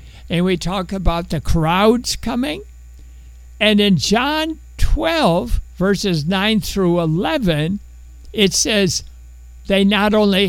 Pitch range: 120-205 Hz